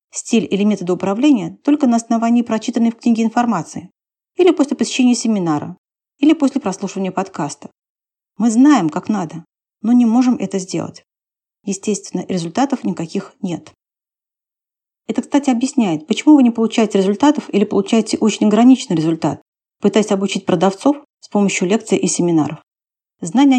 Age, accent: 40-59, native